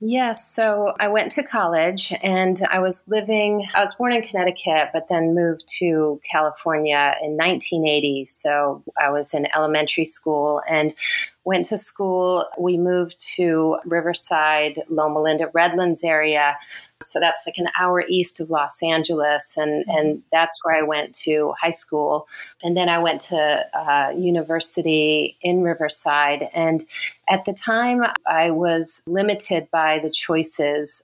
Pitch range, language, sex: 155-175 Hz, English, female